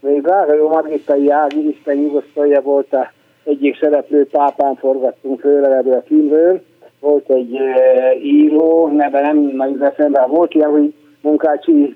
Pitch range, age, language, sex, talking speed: 130-155 Hz, 60-79, Hungarian, male, 125 wpm